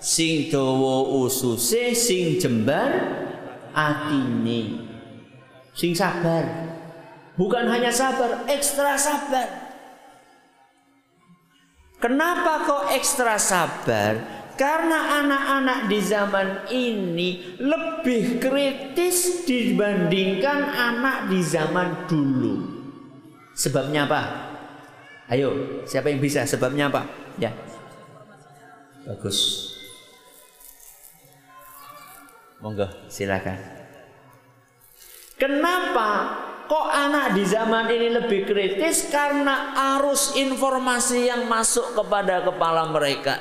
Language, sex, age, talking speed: Malay, male, 50-69, 80 wpm